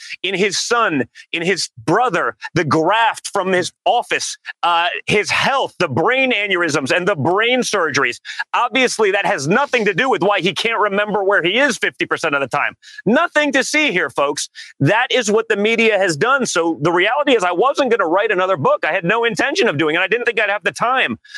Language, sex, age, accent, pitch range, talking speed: English, male, 30-49, American, 195-290 Hz, 215 wpm